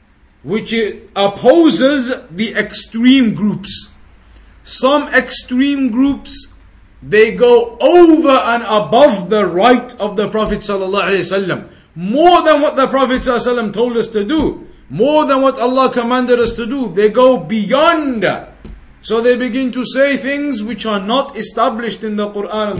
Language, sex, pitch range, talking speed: English, male, 215-250 Hz, 140 wpm